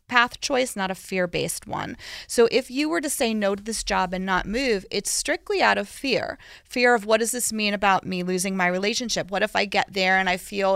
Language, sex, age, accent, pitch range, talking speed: English, female, 30-49, American, 190-250 Hz, 240 wpm